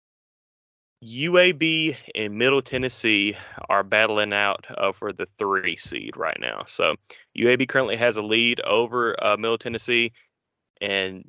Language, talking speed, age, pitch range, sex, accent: English, 130 wpm, 20-39, 105-135 Hz, male, American